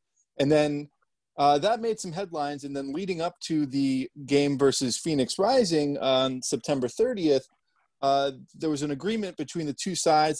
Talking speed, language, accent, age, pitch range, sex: 165 wpm, English, American, 30-49, 125-155 Hz, male